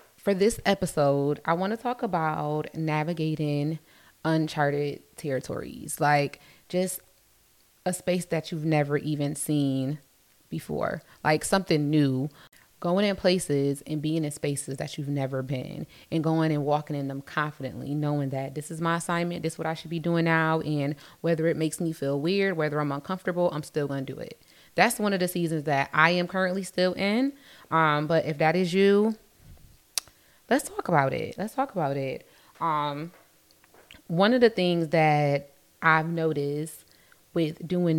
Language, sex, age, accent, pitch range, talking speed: English, female, 20-39, American, 145-175 Hz, 170 wpm